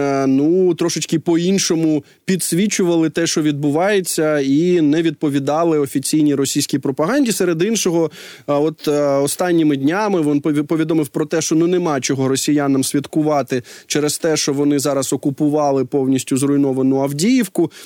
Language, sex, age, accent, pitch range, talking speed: Ukrainian, male, 20-39, native, 145-175 Hz, 125 wpm